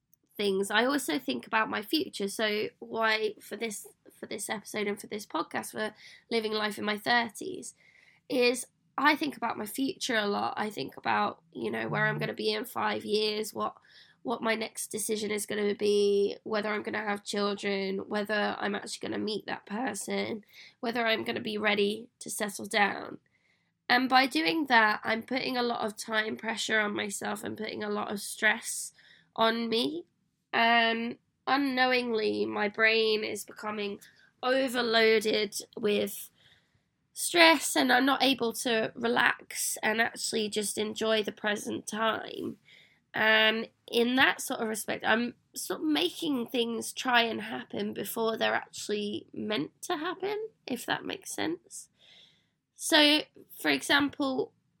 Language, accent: English, British